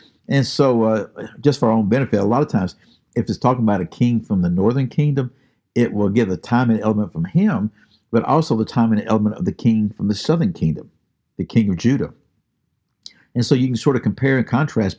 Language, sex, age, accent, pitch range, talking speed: English, male, 50-69, American, 100-130 Hz, 230 wpm